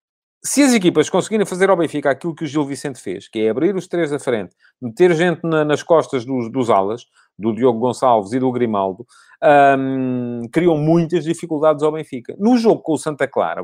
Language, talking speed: English, 200 wpm